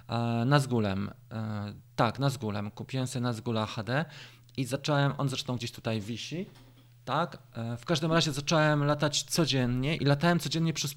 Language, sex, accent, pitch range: Polish, male, native, 115-140 Hz